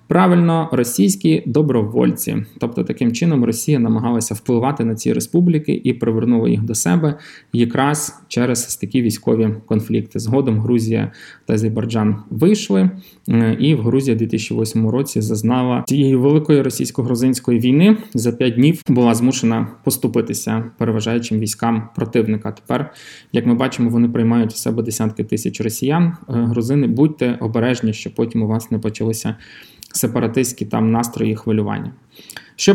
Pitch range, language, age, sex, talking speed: 115-135 Hz, Ukrainian, 20-39, male, 130 wpm